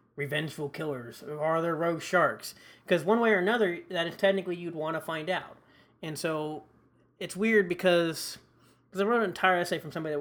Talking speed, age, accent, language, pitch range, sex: 195 wpm, 20-39, American, English, 145-180 Hz, male